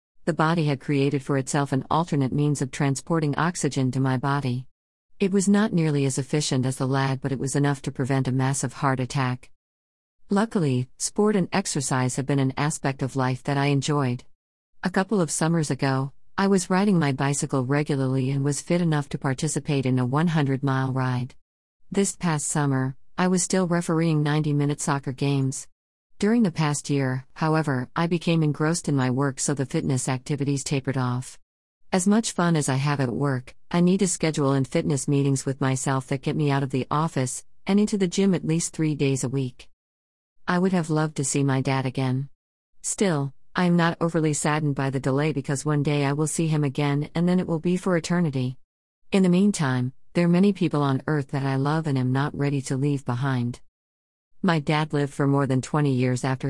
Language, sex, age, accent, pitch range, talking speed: English, female, 50-69, American, 130-155 Hz, 200 wpm